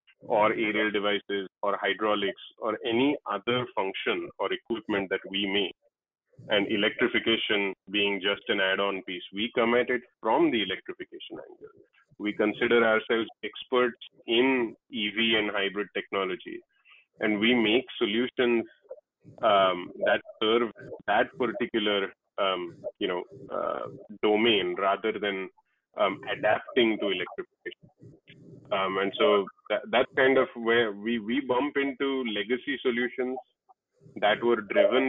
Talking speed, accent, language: 125 wpm, Indian, English